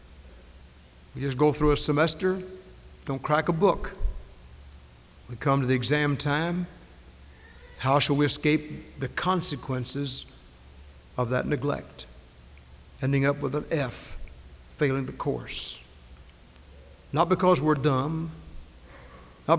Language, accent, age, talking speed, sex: English, American, 60-79, 115 wpm, male